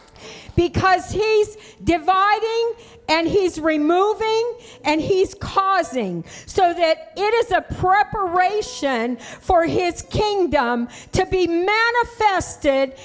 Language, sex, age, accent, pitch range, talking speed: English, female, 50-69, American, 335-420 Hz, 95 wpm